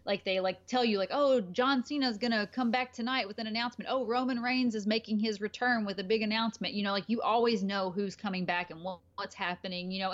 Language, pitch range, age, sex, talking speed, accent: English, 190-230 Hz, 20-39, female, 245 wpm, American